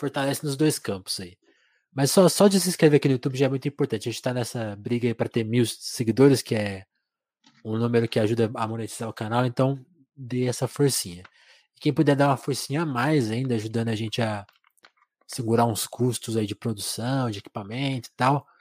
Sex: male